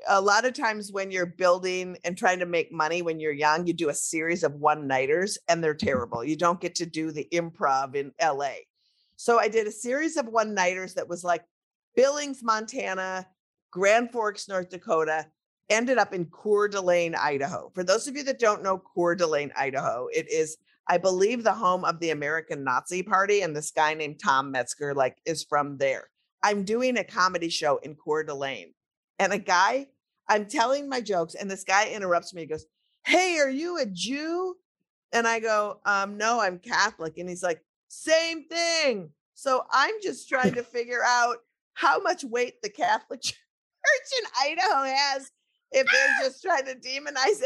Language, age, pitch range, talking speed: English, 50-69, 175-260 Hz, 190 wpm